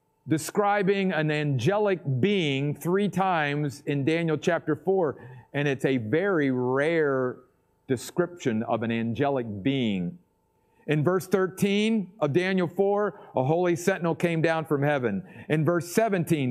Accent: American